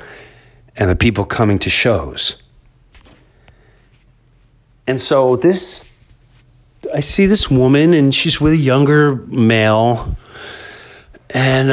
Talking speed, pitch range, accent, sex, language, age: 100 wpm, 105-130 Hz, American, male, English, 40-59